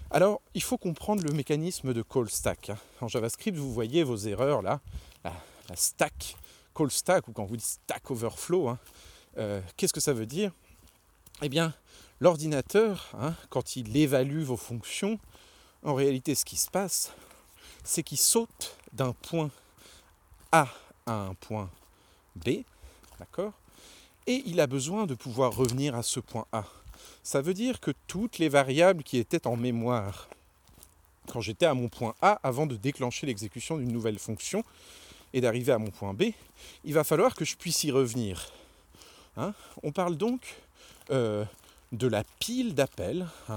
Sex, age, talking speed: male, 40-59, 160 wpm